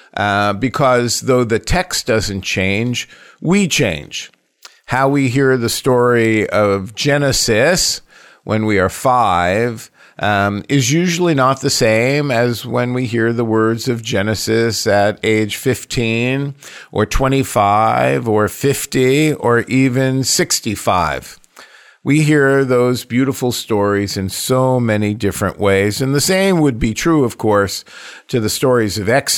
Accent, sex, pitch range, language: American, male, 105-135 Hz, English